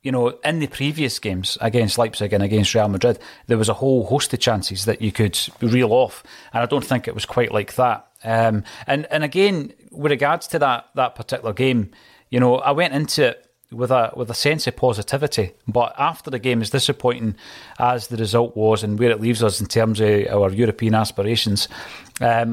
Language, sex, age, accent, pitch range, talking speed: English, male, 30-49, British, 110-130 Hz, 210 wpm